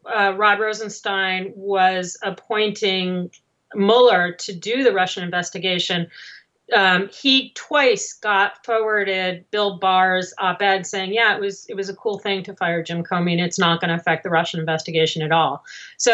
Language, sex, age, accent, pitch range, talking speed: English, female, 30-49, American, 190-265 Hz, 165 wpm